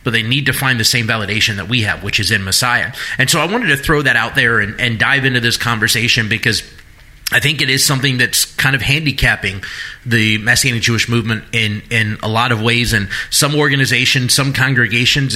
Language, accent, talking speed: English, American, 220 wpm